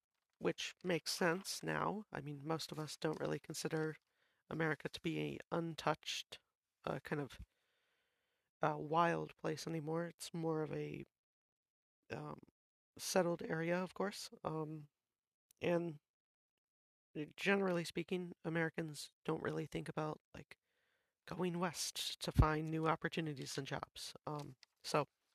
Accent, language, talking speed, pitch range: American, English, 125 wpm, 155-180 Hz